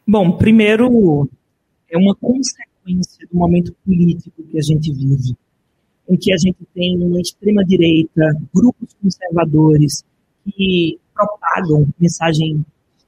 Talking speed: 115 wpm